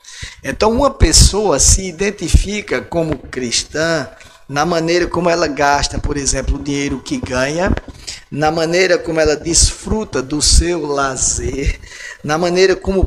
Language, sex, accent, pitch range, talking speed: Portuguese, male, Brazilian, 135-180 Hz, 135 wpm